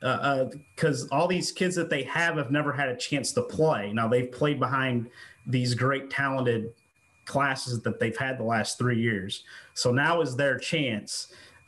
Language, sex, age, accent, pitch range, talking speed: English, male, 30-49, American, 115-130 Hz, 185 wpm